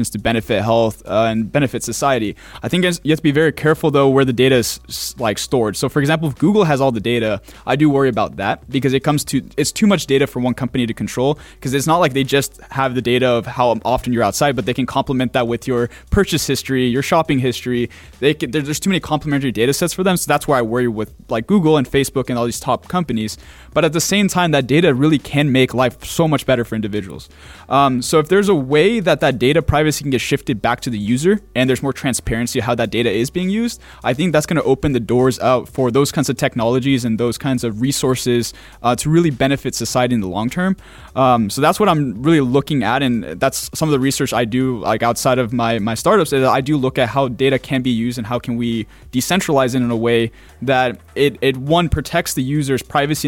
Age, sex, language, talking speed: 20-39, male, English, 250 wpm